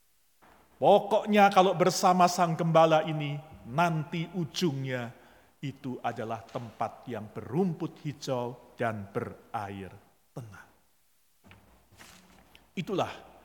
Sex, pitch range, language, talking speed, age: male, 125-205 Hz, Indonesian, 80 wpm, 40-59